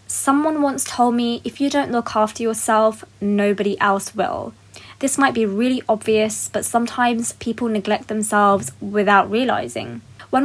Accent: British